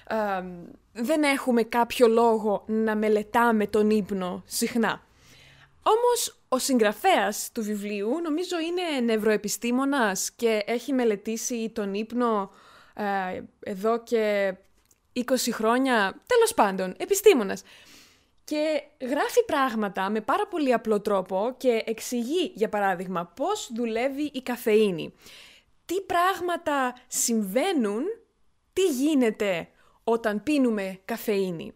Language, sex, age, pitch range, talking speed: Greek, female, 20-39, 215-280 Hz, 100 wpm